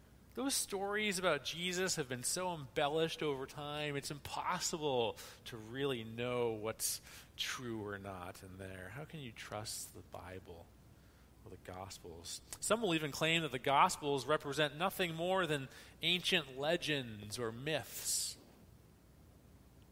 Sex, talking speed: male, 135 wpm